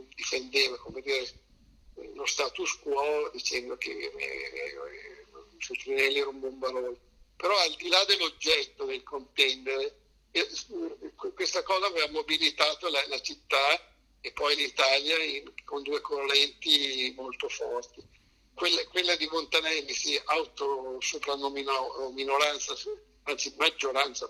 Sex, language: male, Italian